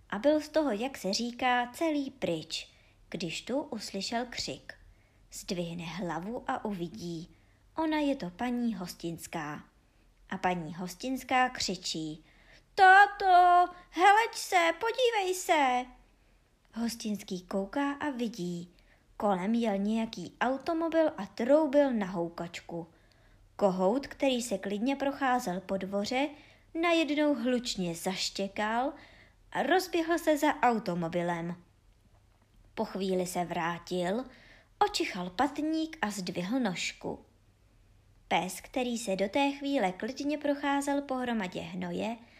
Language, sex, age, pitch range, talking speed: Czech, male, 20-39, 175-280 Hz, 110 wpm